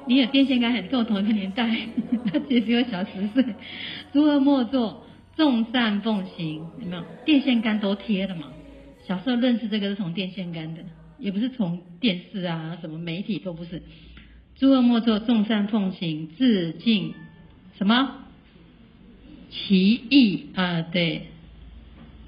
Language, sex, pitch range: Chinese, female, 175-245 Hz